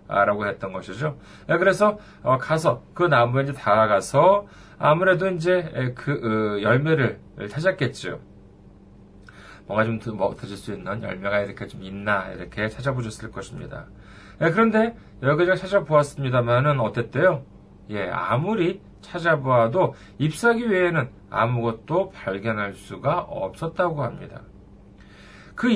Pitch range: 105-165 Hz